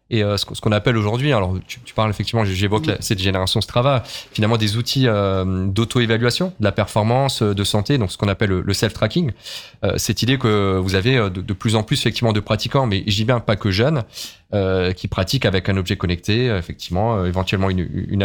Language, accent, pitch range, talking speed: French, French, 105-130 Hz, 185 wpm